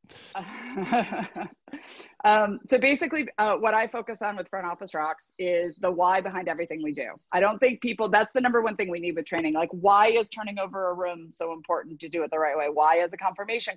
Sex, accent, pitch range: female, American, 170-220 Hz